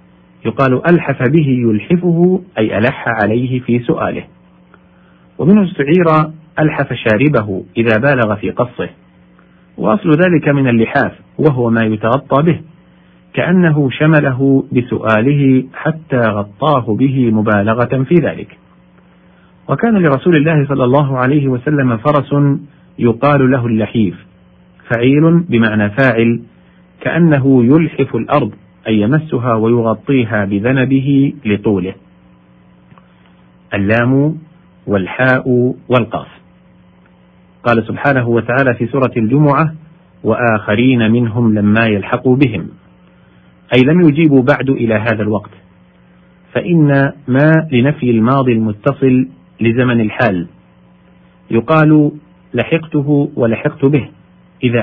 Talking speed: 95 wpm